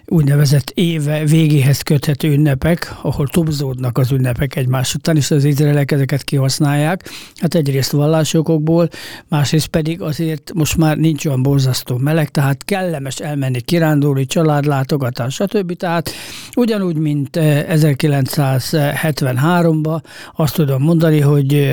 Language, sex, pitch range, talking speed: Hungarian, male, 135-160 Hz, 115 wpm